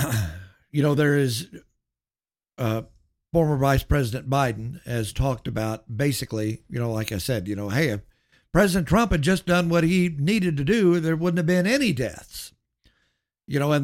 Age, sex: 60-79, male